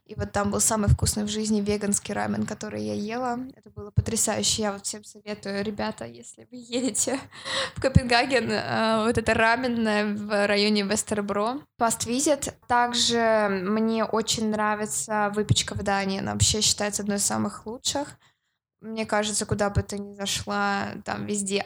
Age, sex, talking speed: 20-39, female, 160 wpm